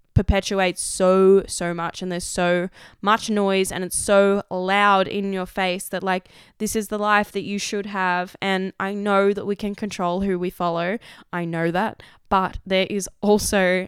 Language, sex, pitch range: English, female, 185-215 Hz